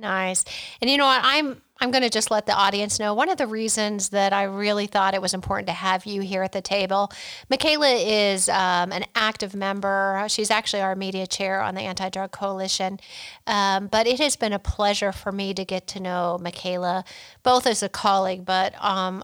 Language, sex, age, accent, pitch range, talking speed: English, female, 40-59, American, 190-220 Hz, 210 wpm